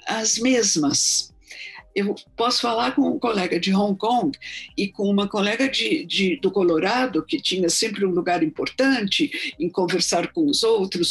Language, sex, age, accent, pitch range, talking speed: Portuguese, female, 50-69, Brazilian, 185-275 Hz, 150 wpm